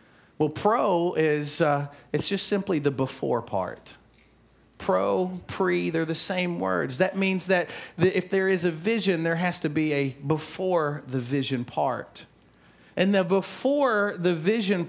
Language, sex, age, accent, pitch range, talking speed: English, male, 40-59, American, 135-190 Hz, 155 wpm